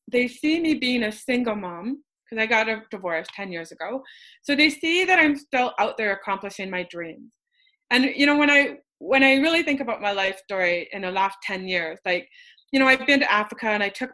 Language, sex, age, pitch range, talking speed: English, female, 20-39, 195-240 Hz, 230 wpm